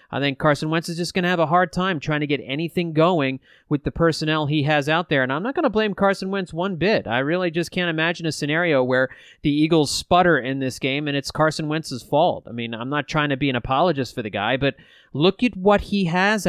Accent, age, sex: American, 30-49, male